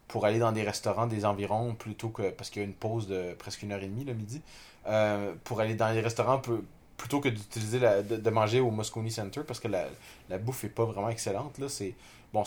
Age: 30-49